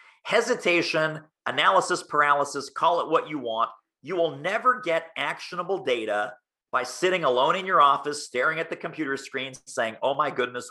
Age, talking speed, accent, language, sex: 40-59, 160 wpm, American, English, male